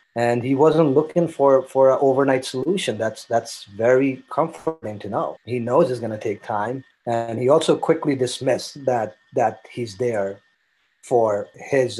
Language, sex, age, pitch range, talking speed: English, male, 30-49, 110-130 Hz, 165 wpm